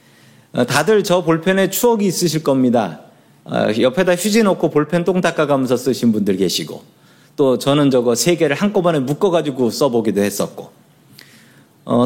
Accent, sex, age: native, male, 40-59